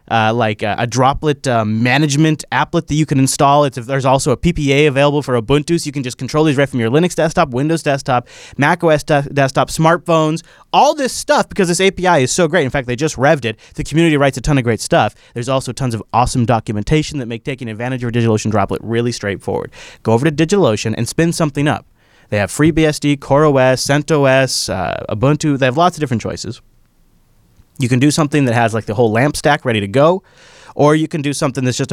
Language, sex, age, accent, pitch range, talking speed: English, male, 30-49, American, 120-155 Hz, 215 wpm